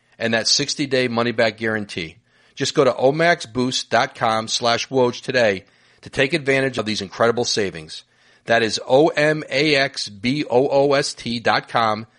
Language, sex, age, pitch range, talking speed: English, male, 40-59, 115-145 Hz, 115 wpm